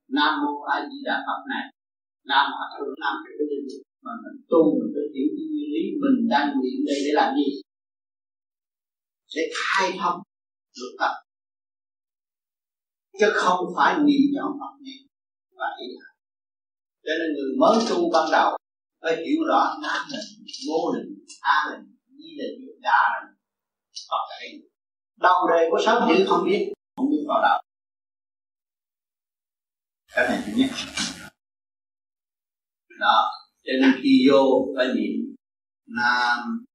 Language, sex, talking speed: Vietnamese, male, 140 wpm